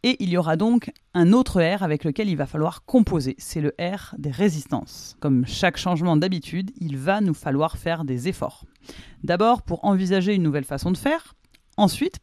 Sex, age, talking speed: female, 30-49, 190 wpm